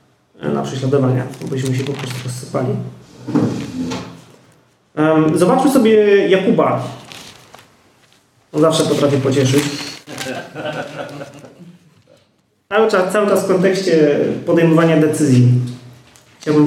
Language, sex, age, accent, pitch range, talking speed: Polish, male, 30-49, native, 145-180 Hz, 85 wpm